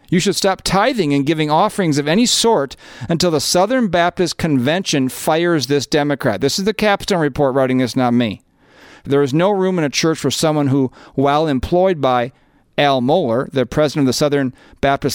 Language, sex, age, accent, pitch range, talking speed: English, male, 40-59, American, 125-160 Hz, 190 wpm